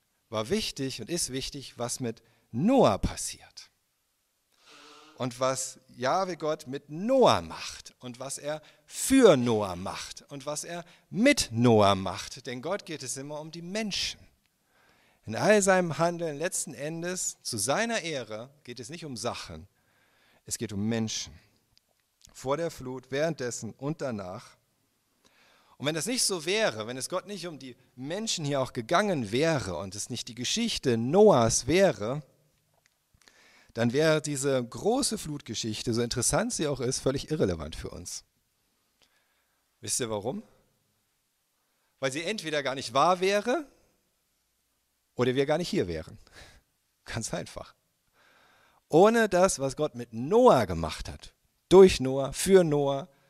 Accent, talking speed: German, 145 wpm